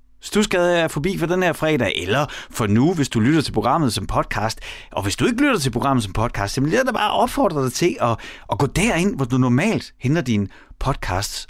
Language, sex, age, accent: Danish, male, 30-49, native